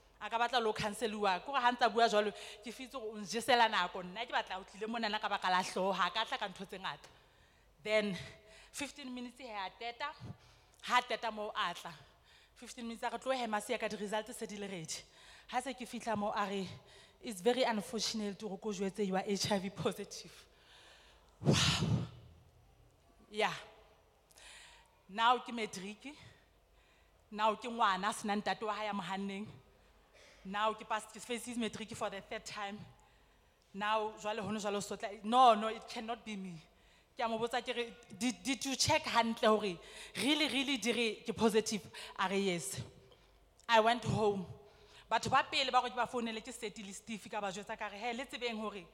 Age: 30-49